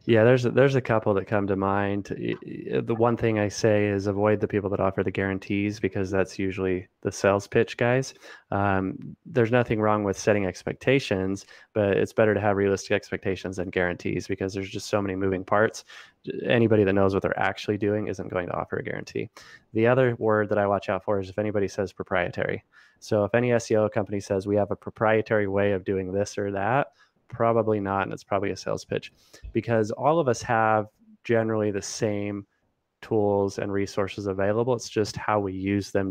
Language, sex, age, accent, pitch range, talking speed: English, male, 20-39, American, 100-110 Hz, 200 wpm